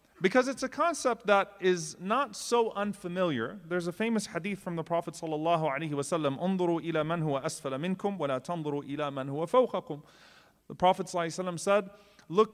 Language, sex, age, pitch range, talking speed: English, male, 30-49, 170-225 Hz, 145 wpm